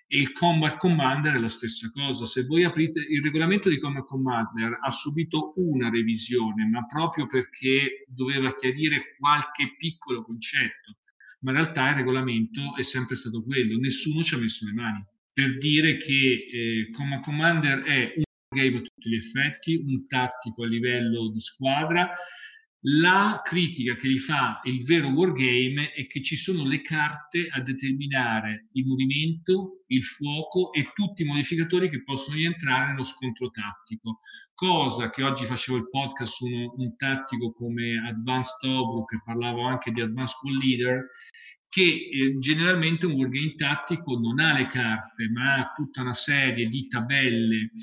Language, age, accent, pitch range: Italian, 40-59, native, 120-155 Hz